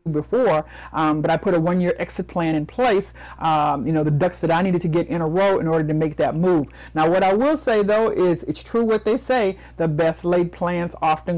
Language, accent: English, American